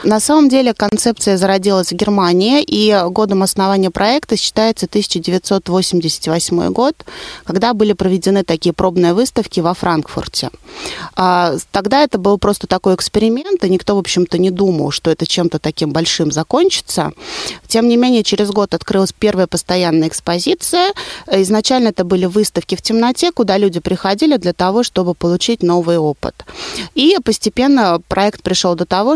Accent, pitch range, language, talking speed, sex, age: native, 175-220 Hz, Russian, 145 wpm, female, 20-39